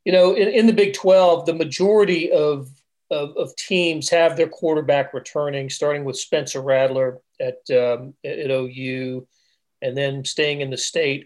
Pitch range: 140-185 Hz